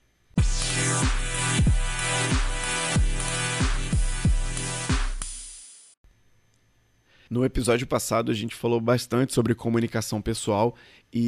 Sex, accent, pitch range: male, Brazilian, 110-140 Hz